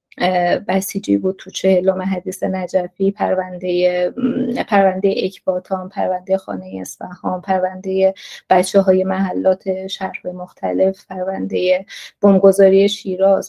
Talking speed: 95 wpm